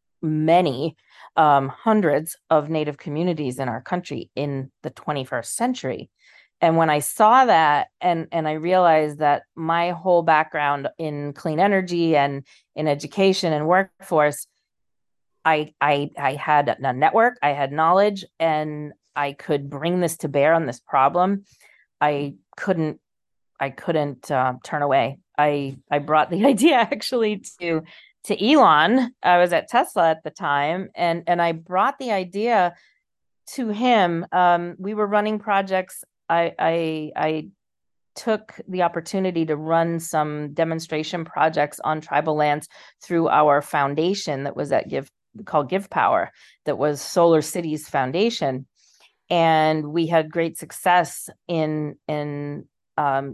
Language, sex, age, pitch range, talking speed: English, female, 30-49, 150-180 Hz, 140 wpm